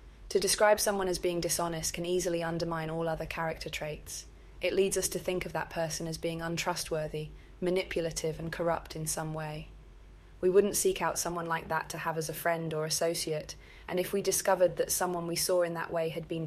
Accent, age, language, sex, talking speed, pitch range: British, 20-39, English, female, 210 wpm, 160-180 Hz